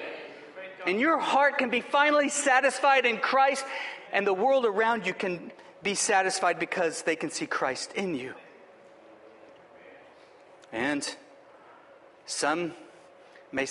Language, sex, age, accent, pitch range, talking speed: English, male, 40-59, American, 170-235 Hz, 120 wpm